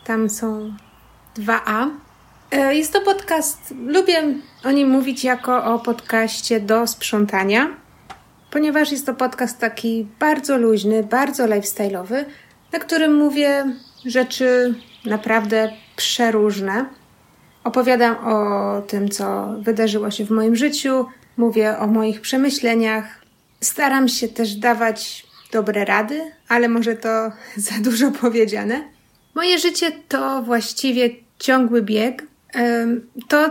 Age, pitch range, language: 30-49, 220-265 Hz, Polish